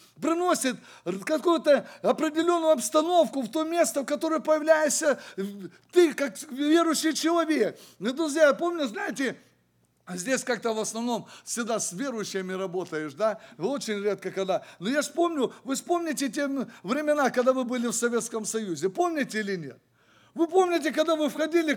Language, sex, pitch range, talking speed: English, male, 225-315 Hz, 140 wpm